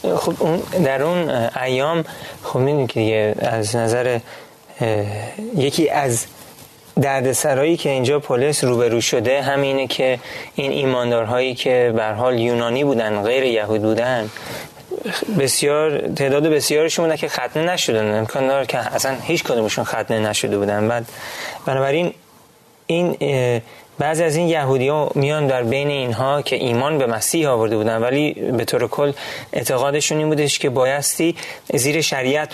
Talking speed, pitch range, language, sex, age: 130 wpm, 115-145 Hz, Persian, male, 30-49